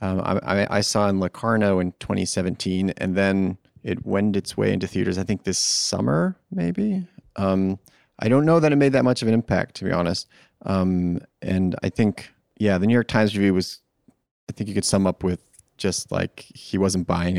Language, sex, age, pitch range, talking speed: English, male, 30-49, 90-110 Hz, 205 wpm